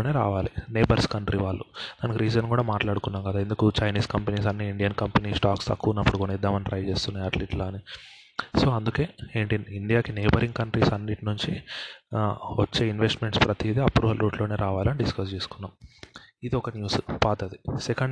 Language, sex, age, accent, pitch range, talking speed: Telugu, male, 20-39, native, 105-120 Hz, 140 wpm